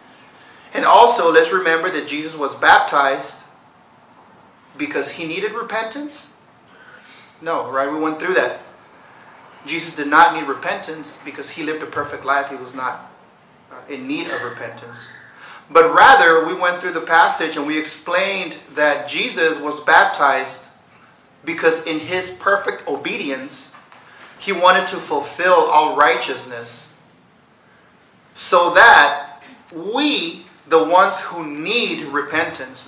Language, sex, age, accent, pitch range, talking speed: English, male, 30-49, American, 145-180 Hz, 125 wpm